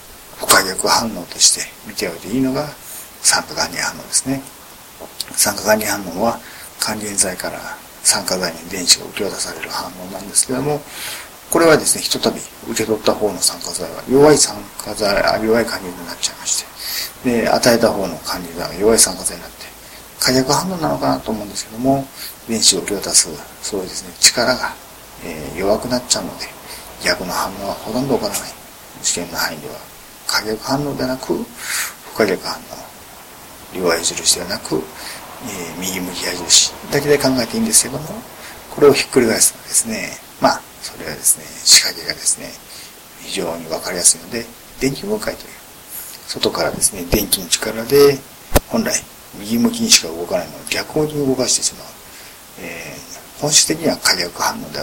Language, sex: Japanese, male